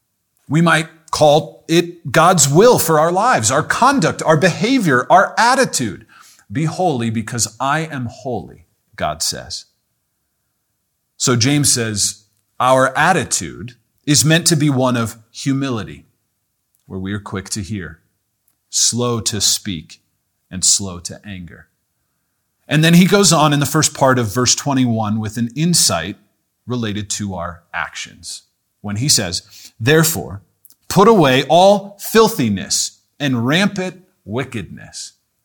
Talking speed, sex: 130 wpm, male